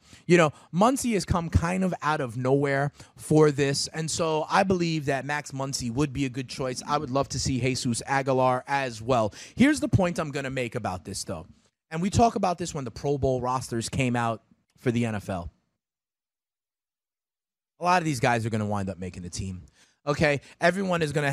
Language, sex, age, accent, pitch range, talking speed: English, male, 30-49, American, 125-160 Hz, 205 wpm